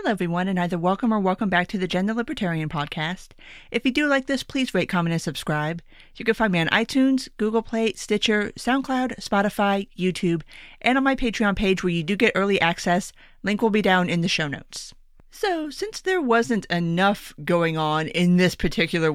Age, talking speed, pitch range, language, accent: 30-49, 200 wpm, 175-240 Hz, English, American